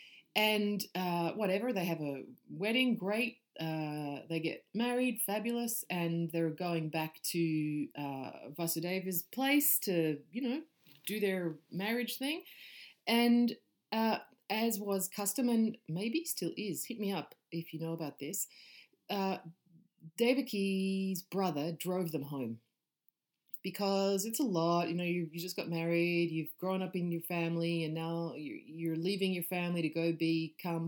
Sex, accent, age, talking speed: female, Australian, 30-49, 150 wpm